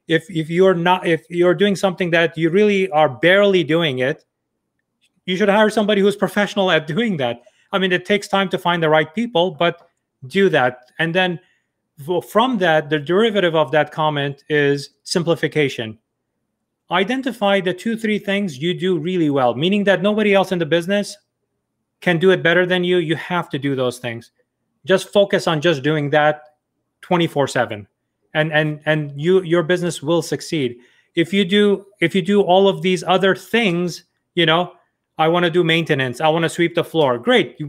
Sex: male